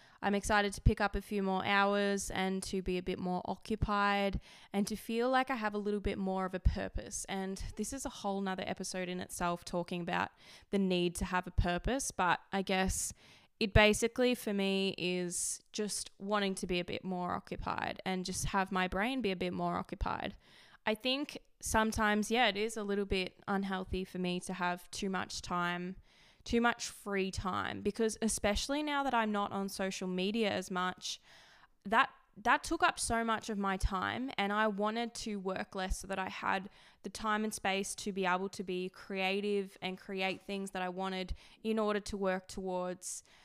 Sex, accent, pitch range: female, Australian, 185-210 Hz